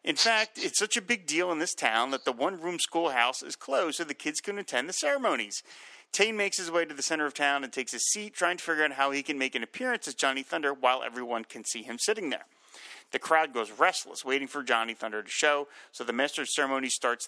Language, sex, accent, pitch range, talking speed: English, male, American, 125-165 Hz, 245 wpm